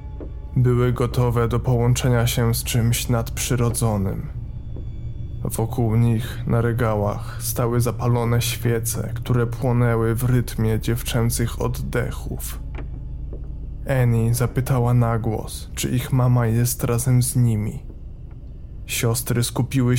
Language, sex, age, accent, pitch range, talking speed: Polish, male, 20-39, native, 110-125 Hz, 100 wpm